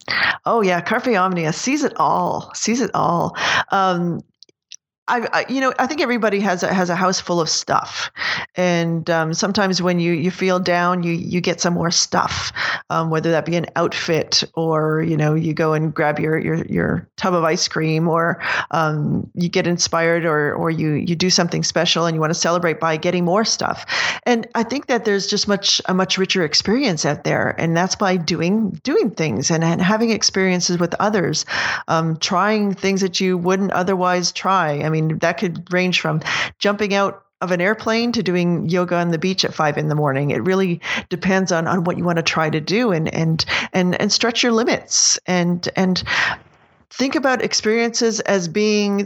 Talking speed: 195 wpm